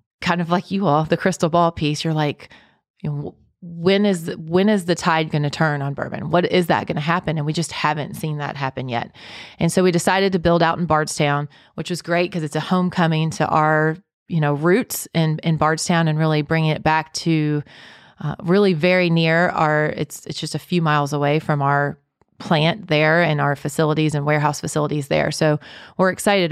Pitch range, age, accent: 150-180 Hz, 30-49, American